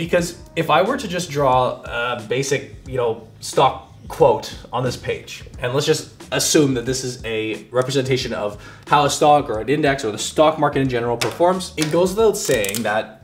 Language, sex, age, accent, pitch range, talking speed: English, male, 20-39, American, 120-160 Hz, 190 wpm